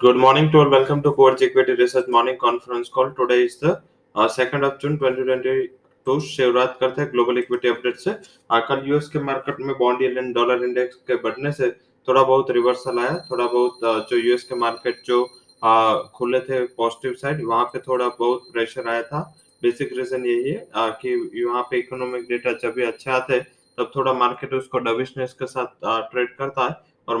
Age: 20-39